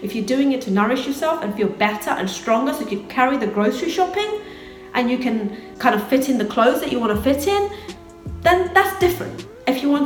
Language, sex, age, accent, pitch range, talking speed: English, female, 40-59, British, 210-315 Hz, 240 wpm